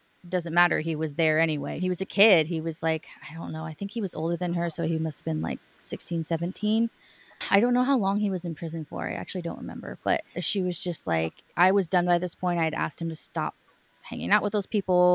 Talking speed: 265 wpm